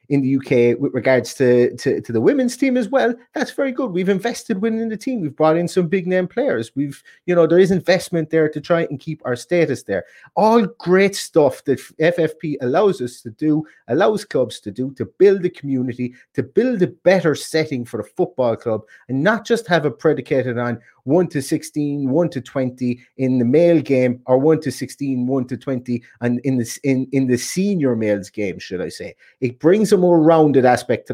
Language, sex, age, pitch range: English, male, 30-49, 125-180 Hz